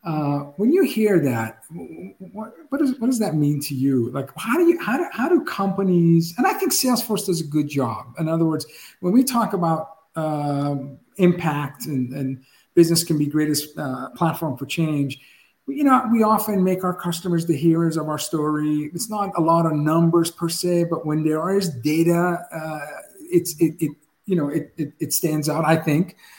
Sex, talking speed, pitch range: male, 200 wpm, 150-195 Hz